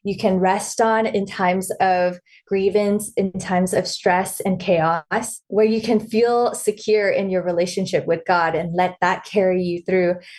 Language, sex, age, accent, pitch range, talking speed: English, female, 20-39, American, 185-230 Hz, 175 wpm